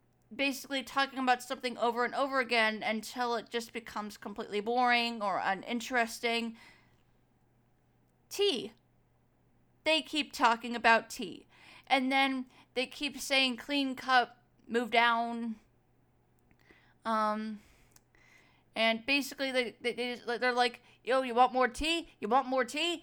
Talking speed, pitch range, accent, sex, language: 120 wpm, 235-280 Hz, American, female, English